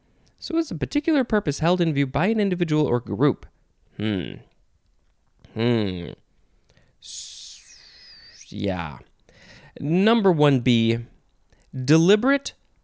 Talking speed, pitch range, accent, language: 90 wpm, 110-175 Hz, American, English